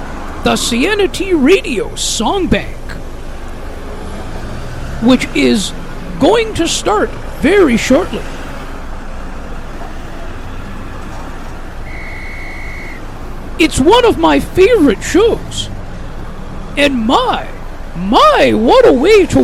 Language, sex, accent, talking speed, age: English, male, American, 75 wpm, 50-69